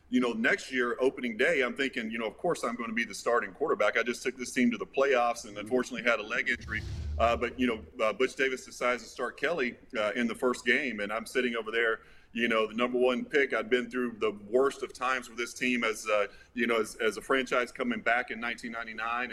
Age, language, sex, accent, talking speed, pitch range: 30-49, English, male, American, 255 wpm, 115-130 Hz